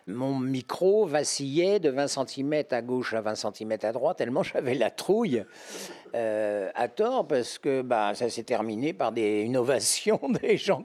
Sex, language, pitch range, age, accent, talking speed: male, French, 105-140 Hz, 60-79, French, 170 wpm